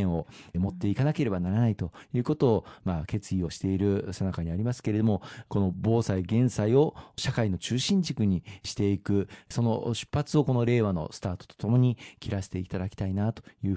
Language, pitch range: Japanese, 95-115 Hz